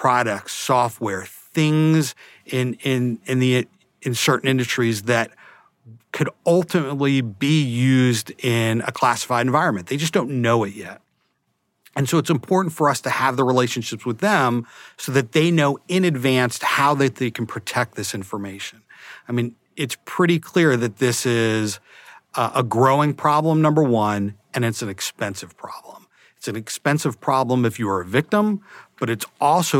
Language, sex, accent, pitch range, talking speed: English, male, American, 110-135 Hz, 165 wpm